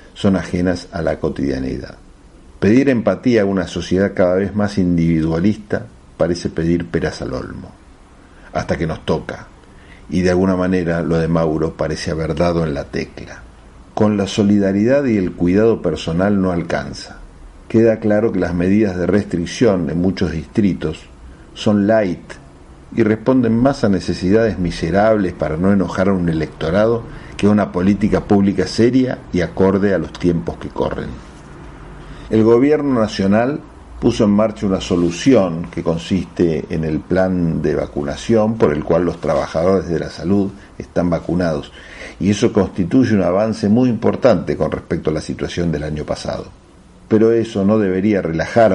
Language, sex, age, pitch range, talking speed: Spanish, male, 50-69, 85-105 Hz, 155 wpm